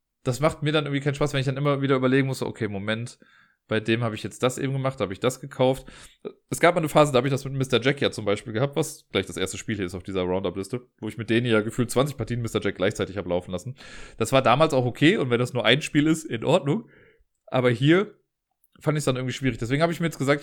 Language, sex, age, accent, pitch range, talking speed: German, male, 30-49, German, 115-155 Hz, 280 wpm